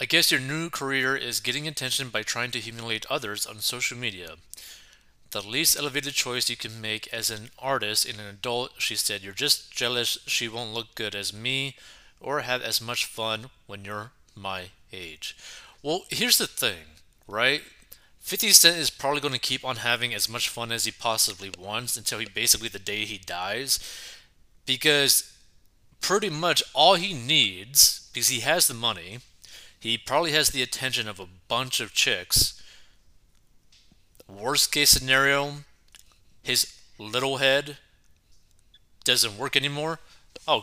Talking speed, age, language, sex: 160 wpm, 20-39, English, male